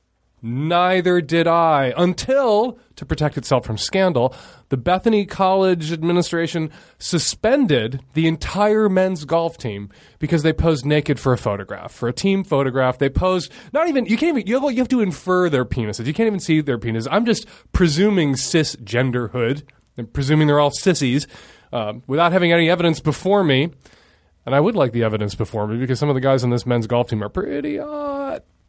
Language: English